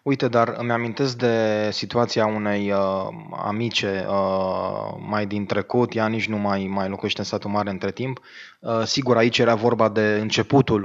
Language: Romanian